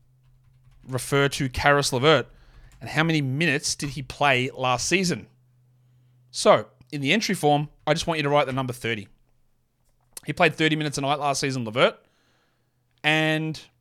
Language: English